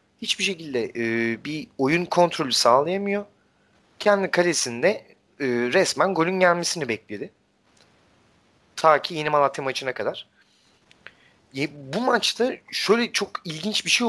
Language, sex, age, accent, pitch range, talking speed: Turkish, male, 30-49, native, 115-180 Hz, 120 wpm